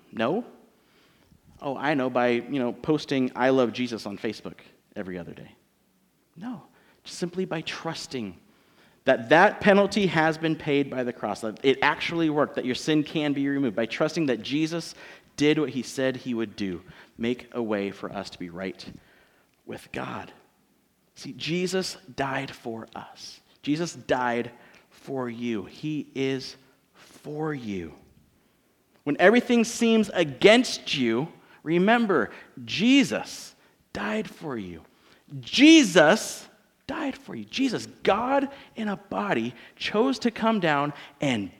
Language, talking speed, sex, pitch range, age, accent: English, 140 wpm, male, 125-185 Hz, 40-59, American